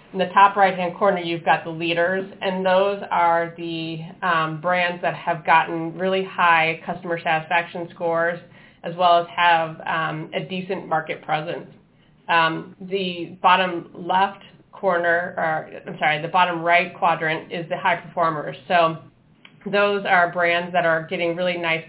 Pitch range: 160-185 Hz